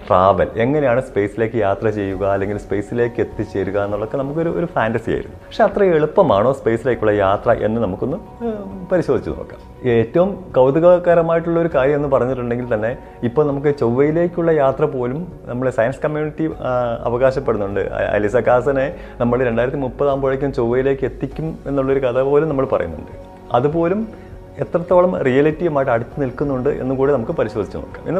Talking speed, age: 120 wpm, 30-49